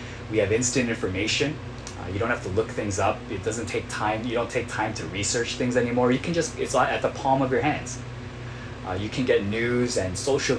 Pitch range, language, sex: 120-130 Hz, Korean, male